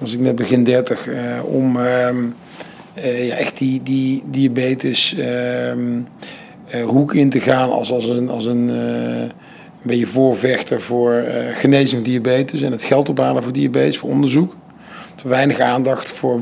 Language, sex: Dutch, male